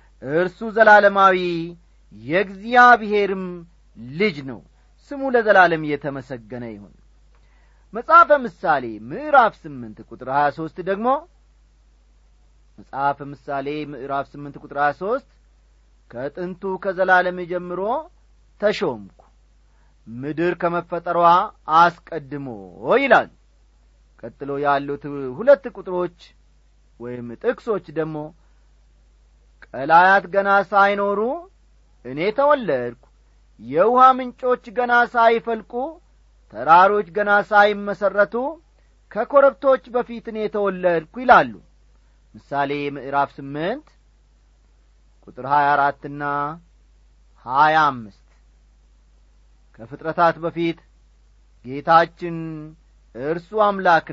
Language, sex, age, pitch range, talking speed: English, male, 40-59, 125-210 Hz, 60 wpm